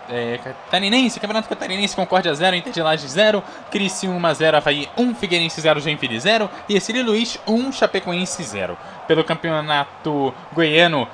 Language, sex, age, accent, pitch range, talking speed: Portuguese, male, 10-29, Brazilian, 150-190 Hz, 155 wpm